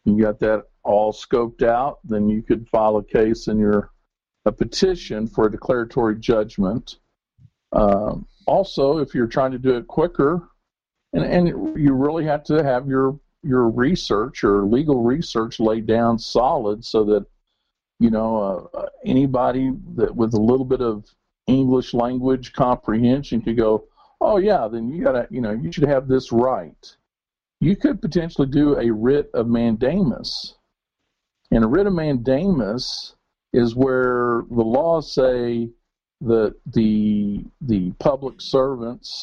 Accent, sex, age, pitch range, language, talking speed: American, male, 50-69, 110-135 Hz, English, 150 wpm